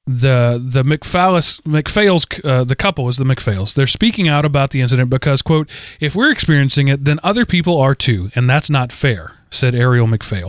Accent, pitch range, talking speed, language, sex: American, 130-170 Hz, 190 wpm, English, male